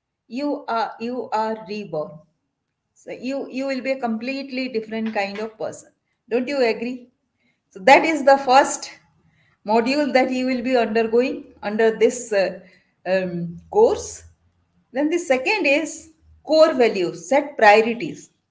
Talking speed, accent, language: 140 wpm, Indian, English